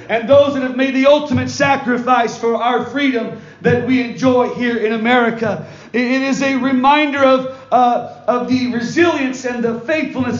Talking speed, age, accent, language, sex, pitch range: 165 wpm, 40-59, American, English, male, 235-270 Hz